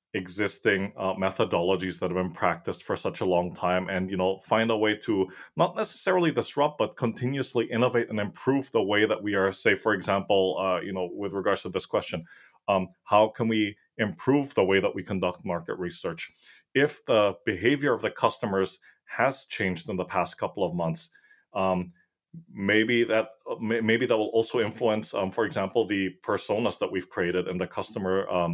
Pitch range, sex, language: 90-115 Hz, male, English